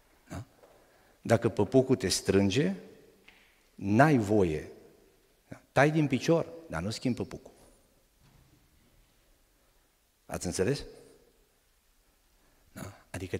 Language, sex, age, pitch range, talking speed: Romanian, male, 50-69, 90-140 Hz, 70 wpm